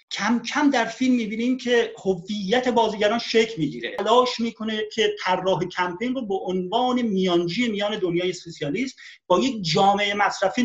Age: 40-59